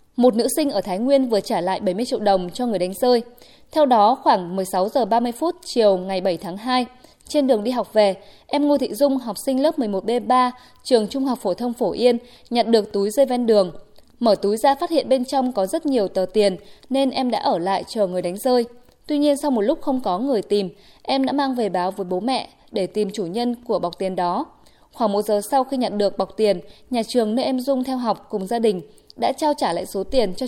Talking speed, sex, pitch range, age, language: 240 wpm, female, 200-260 Hz, 20-39, Vietnamese